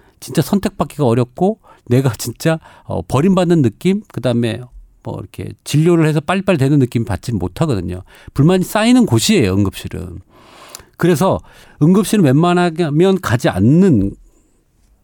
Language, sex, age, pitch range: Korean, male, 40-59, 120-185 Hz